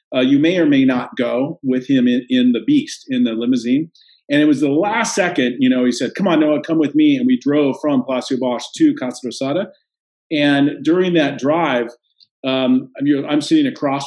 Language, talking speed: English, 215 wpm